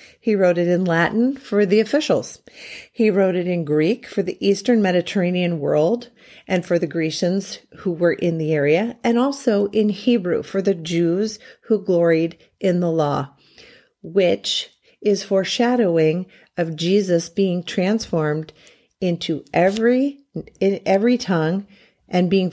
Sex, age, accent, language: female, 40-59, American, English